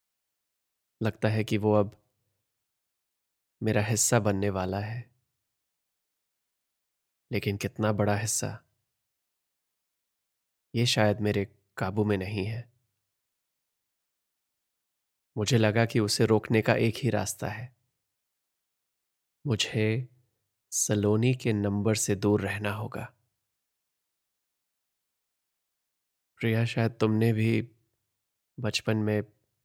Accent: native